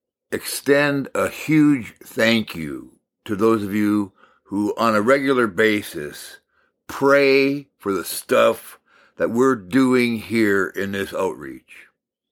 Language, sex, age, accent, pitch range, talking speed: English, male, 60-79, American, 120-150 Hz, 120 wpm